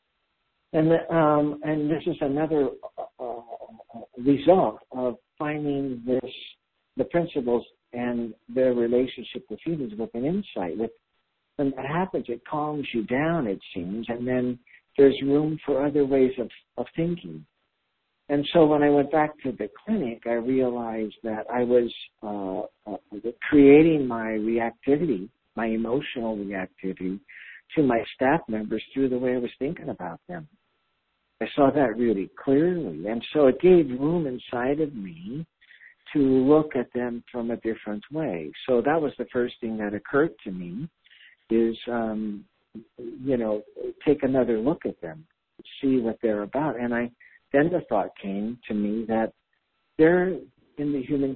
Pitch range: 115-150 Hz